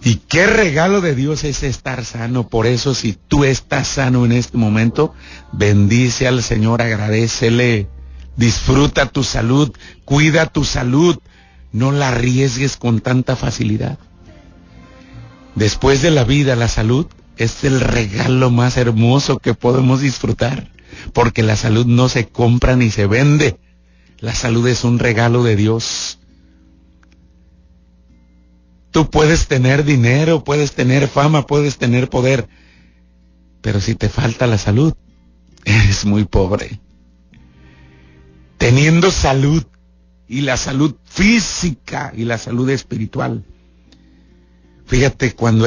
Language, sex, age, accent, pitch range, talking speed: Spanish, male, 50-69, Mexican, 90-130 Hz, 125 wpm